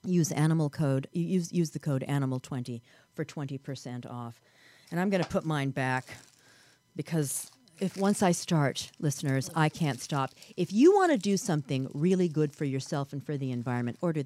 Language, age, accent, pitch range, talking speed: English, 40-59, American, 130-175 Hz, 185 wpm